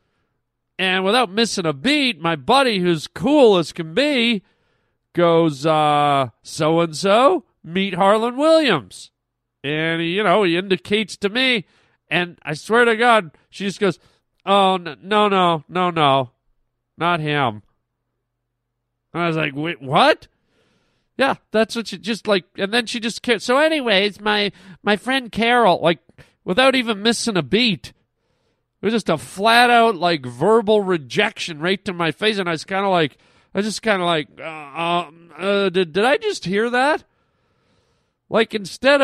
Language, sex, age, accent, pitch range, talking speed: English, male, 40-59, American, 155-210 Hz, 160 wpm